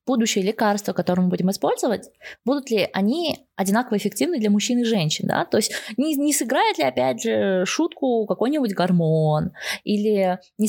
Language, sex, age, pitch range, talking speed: Russian, female, 20-39, 180-245 Hz, 165 wpm